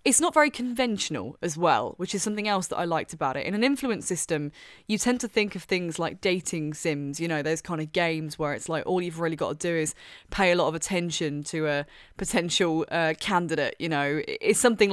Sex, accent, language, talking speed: female, British, English, 235 wpm